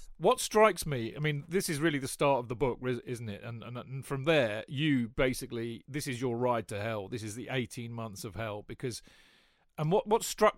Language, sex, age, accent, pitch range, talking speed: English, male, 40-59, British, 130-170 Hz, 225 wpm